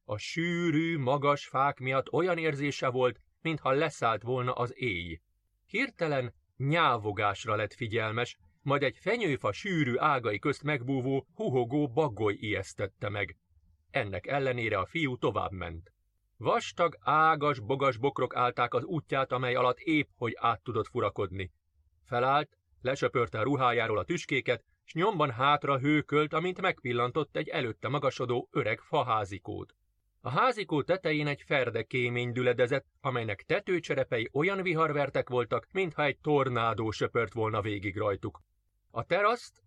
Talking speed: 130 wpm